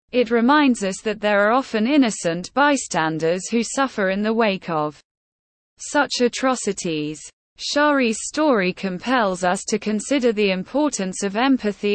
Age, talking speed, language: 20-39, 135 wpm, English